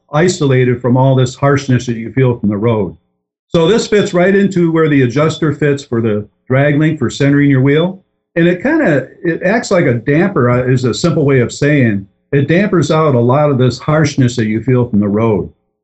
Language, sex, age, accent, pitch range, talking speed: English, male, 50-69, American, 115-160 Hz, 215 wpm